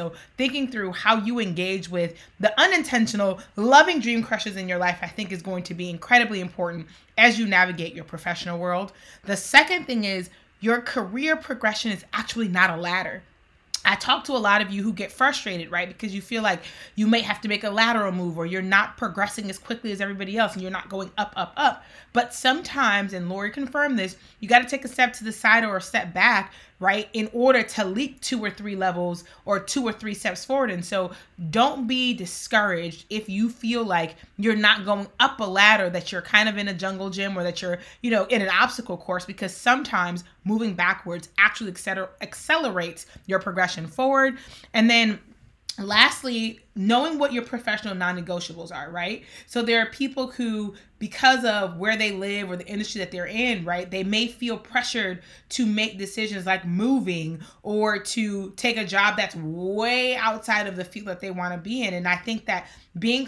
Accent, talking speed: American, 200 wpm